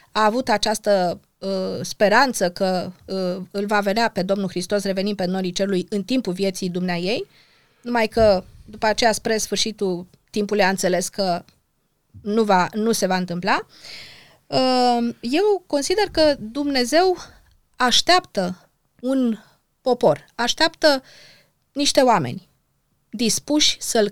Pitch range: 195-280 Hz